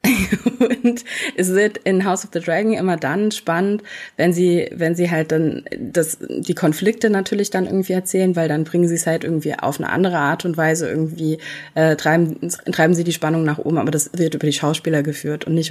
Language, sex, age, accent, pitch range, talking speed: German, female, 20-39, German, 160-195 Hz, 210 wpm